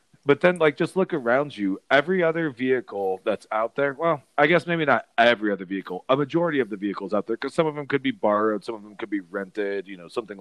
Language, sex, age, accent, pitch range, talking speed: English, male, 30-49, American, 110-140 Hz, 255 wpm